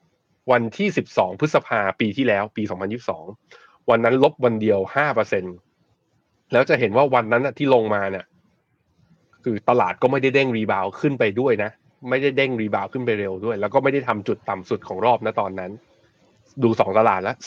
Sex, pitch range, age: male, 105-140 Hz, 20-39